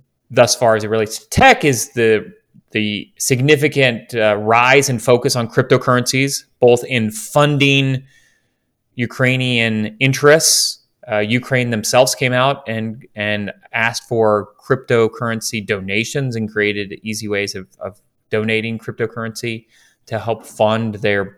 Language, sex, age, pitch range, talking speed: English, male, 30-49, 110-130 Hz, 125 wpm